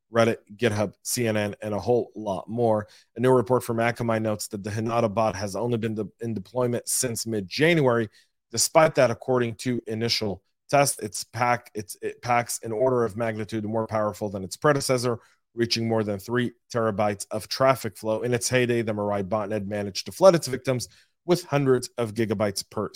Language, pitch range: English, 105-125 Hz